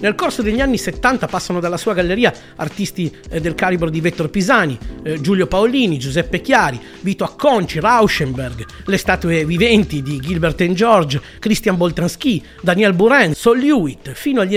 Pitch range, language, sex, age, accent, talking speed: 140-200 Hz, Italian, male, 40-59, native, 150 wpm